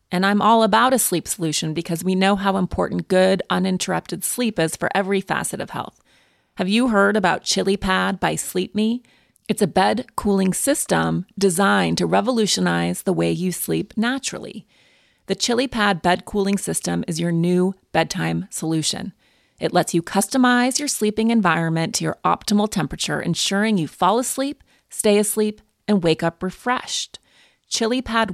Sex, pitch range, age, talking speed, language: female, 175-225 Hz, 30-49, 155 wpm, English